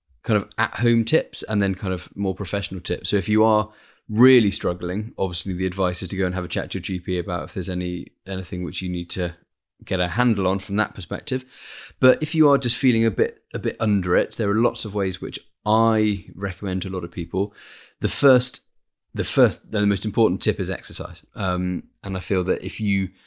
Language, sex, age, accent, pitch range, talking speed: English, male, 30-49, British, 95-105 Hz, 230 wpm